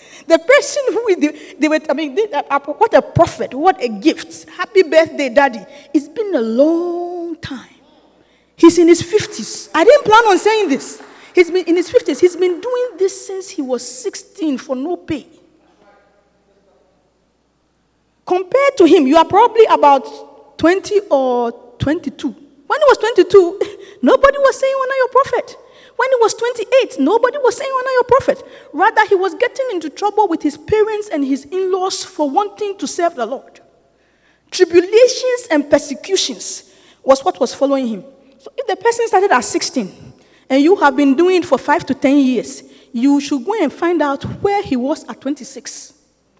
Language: English